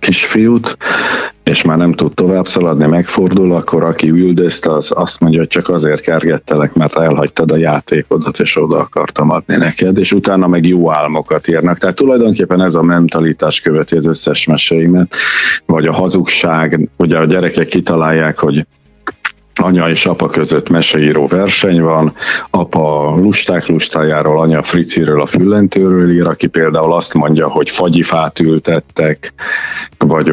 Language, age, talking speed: Hungarian, 50-69, 145 wpm